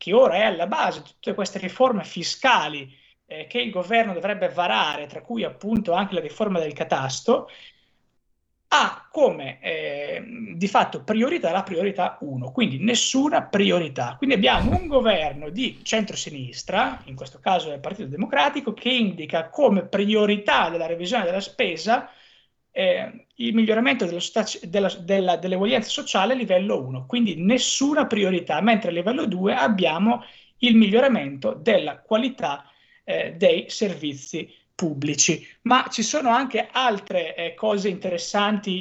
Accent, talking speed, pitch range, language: native, 140 wpm, 170-230 Hz, Italian